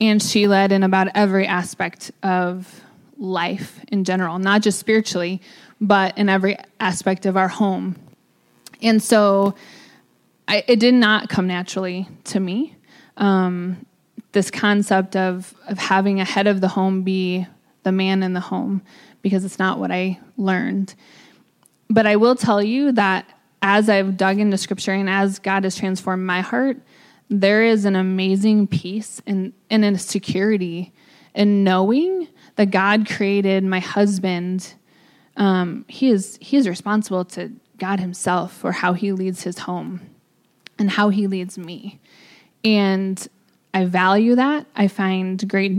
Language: English